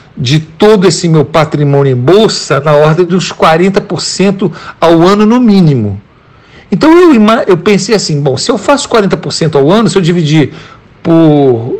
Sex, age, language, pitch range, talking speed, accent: male, 60-79, Portuguese, 140-200 Hz, 160 wpm, Brazilian